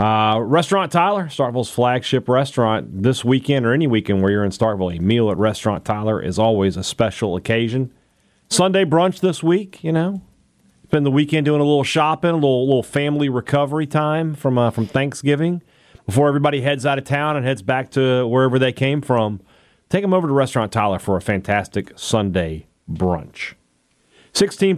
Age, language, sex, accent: 40-59, English, male, American